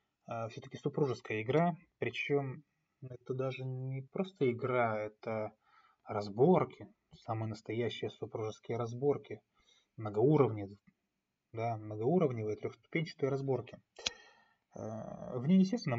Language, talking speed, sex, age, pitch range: Russian, 85 wpm, male, 20-39, 115-155 Hz